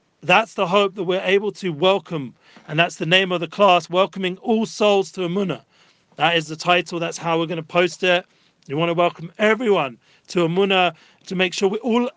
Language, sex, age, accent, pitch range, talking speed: English, male, 40-59, British, 155-180 Hz, 210 wpm